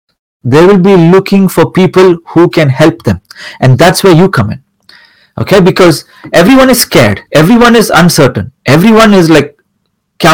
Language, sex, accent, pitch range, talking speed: Hindi, male, native, 145-190 Hz, 165 wpm